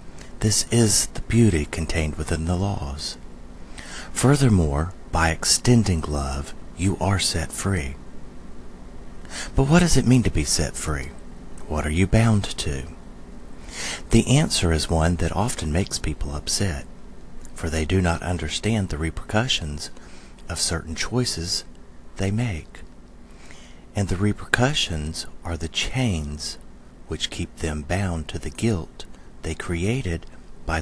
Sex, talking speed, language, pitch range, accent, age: male, 130 wpm, English, 75-105 Hz, American, 40-59